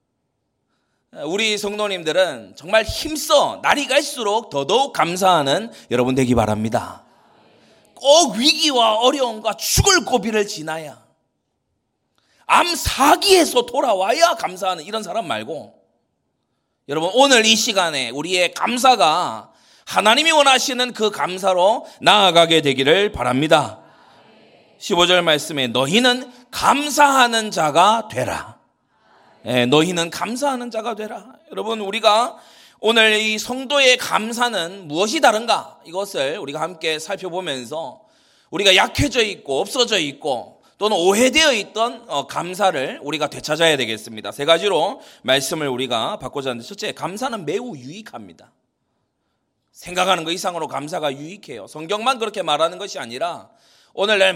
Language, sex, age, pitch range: Korean, male, 30-49, 155-245 Hz